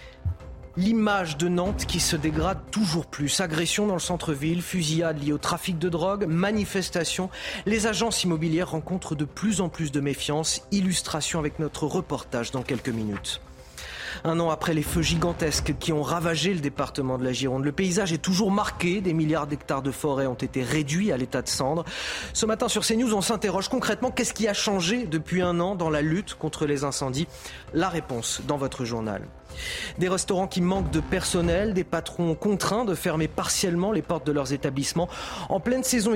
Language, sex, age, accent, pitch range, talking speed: French, male, 30-49, French, 145-190 Hz, 185 wpm